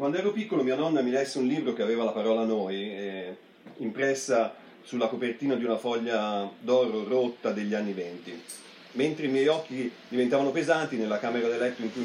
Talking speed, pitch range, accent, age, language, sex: 190 wpm, 110-140 Hz, native, 40-59, Italian, male